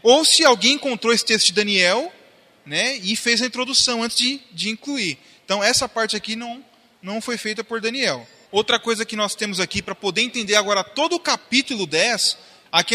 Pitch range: 190-235 Hz